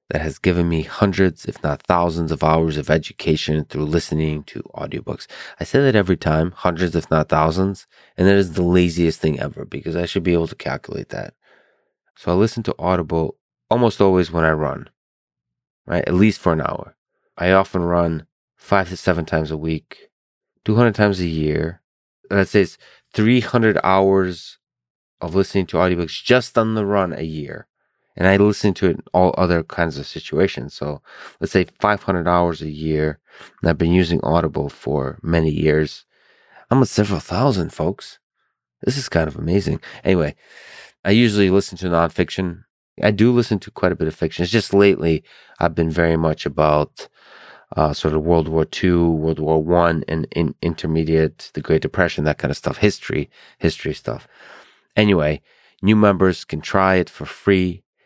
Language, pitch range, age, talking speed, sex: English, 80-95 Hz, 20-39, 180 wpm, male